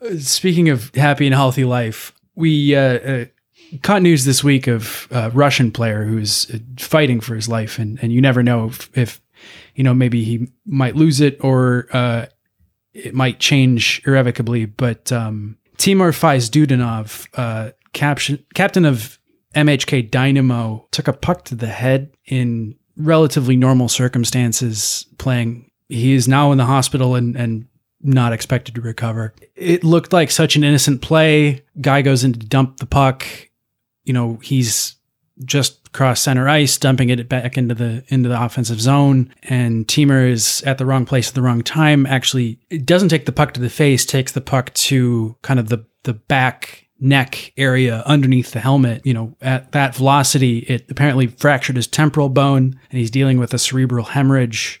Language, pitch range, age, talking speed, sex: English, 120-140 Hz, 20-39, 170 wpm, male